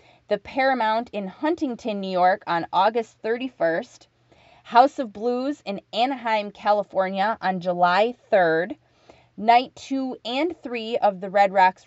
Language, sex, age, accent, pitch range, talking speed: English, female, 20-39, American, 175-225 Hz, 130 wpm